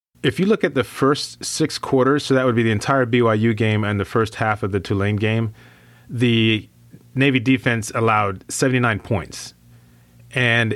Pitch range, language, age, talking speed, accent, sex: 105-130 Hz, English, 30-49, 175 wpm, American, male